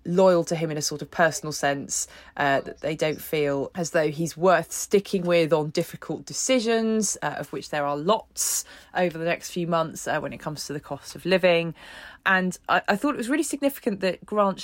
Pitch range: 170-205 Hz